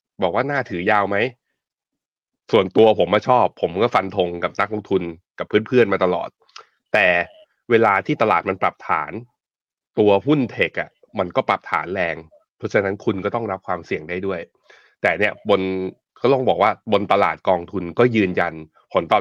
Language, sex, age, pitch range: Thai, male, 20-39, 95-120 Hz